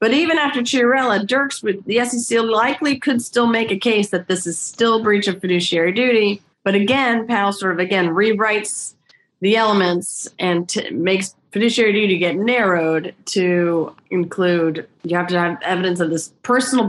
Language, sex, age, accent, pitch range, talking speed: English, female, 30-49, American, 180-240 Hz, 170 wpm